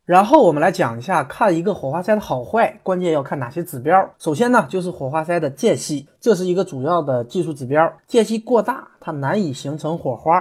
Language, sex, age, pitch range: Chinese, male, 20-39, 145-205 Hz